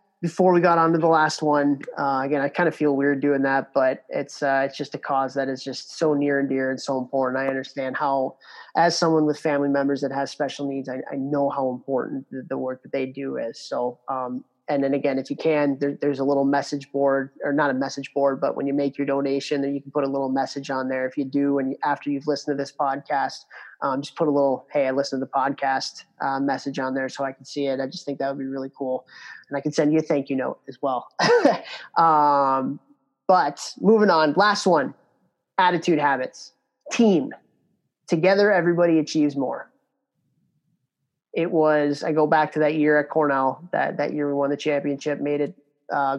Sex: male